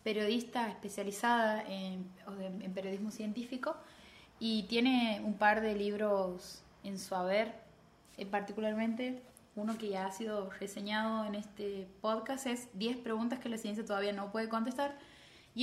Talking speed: 140 wpm